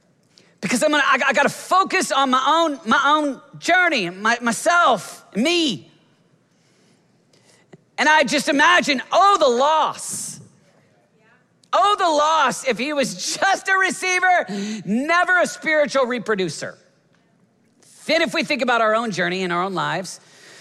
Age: 40-59